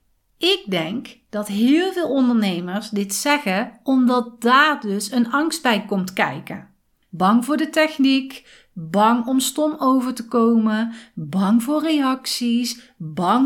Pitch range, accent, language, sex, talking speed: 205-260 Hz, Dutch, Dutch, female, 135 wpm